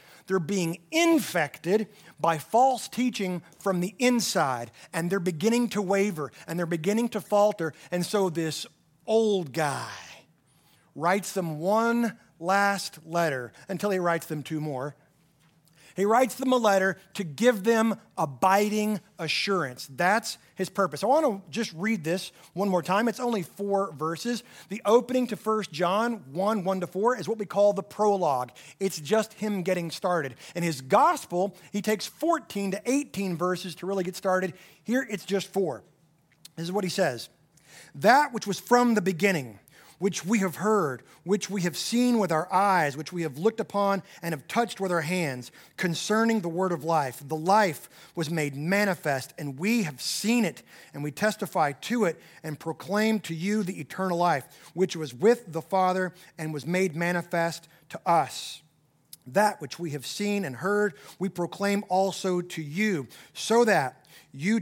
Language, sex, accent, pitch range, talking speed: English, male, American, 165-210 Hz, 170 wpm